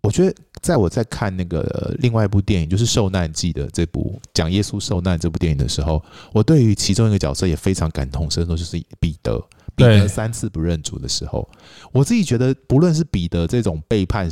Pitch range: 90-130 Hz